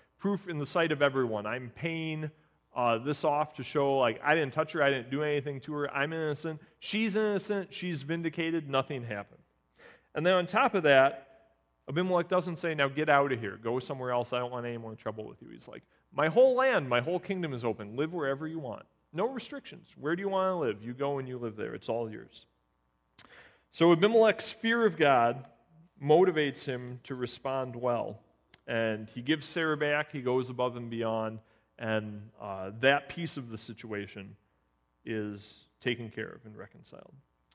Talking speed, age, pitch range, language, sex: 195 wpm, 40-59, 115-170 Hz, English, male